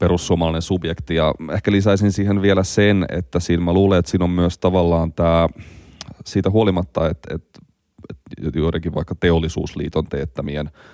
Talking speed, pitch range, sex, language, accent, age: 150 wpm, 80-90 Hz, male, Finnish, native, 30-49